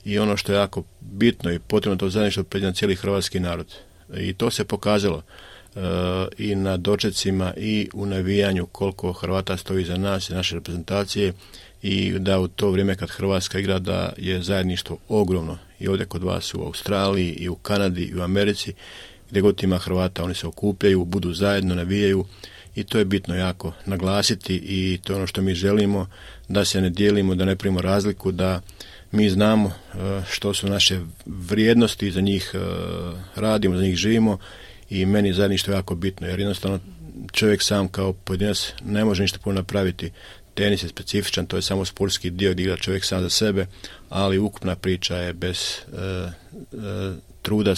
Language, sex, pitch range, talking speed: Croatian, male, 90-100 Hz, 175 wpm